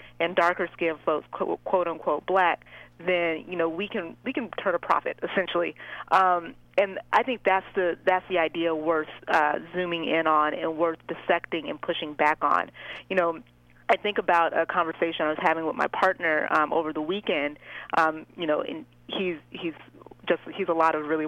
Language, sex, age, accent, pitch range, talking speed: English, female, 30-49, American, 160-190 Hz, 190 wpm